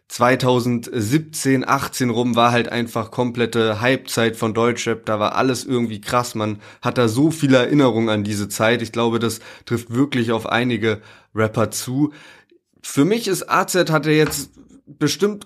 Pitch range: 120-150 Hz